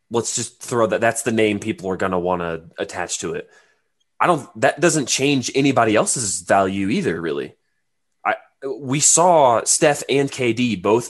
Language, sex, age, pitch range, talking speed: English, male, 20-39, 95-125 Hz, 170 wpm